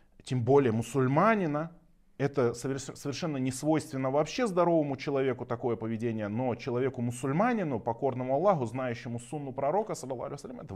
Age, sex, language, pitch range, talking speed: 30-49, male, Russian, 120-165 Hz, 110 wpm